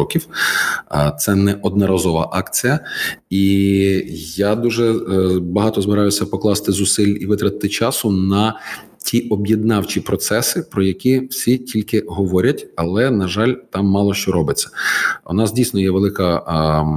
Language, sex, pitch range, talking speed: Ukrainian, male, 95-110 Hz, 130 wpm